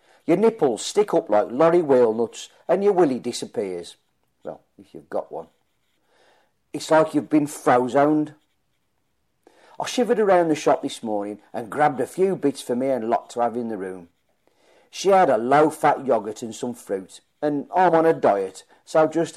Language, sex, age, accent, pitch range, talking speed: English, male, 40-59, British, 115-165 Hz, 185 wpm